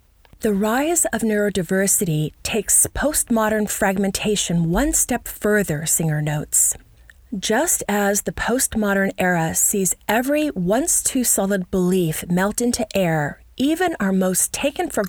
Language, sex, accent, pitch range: English, female, American, 175-235 Hz